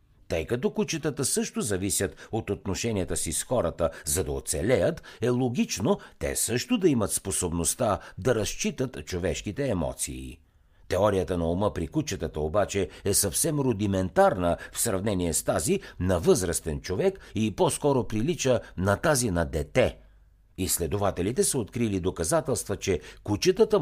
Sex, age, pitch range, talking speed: male, 60-79, 85-135 Hz, 135 wpm